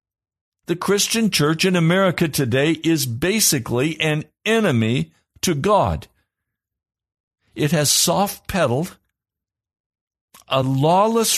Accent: American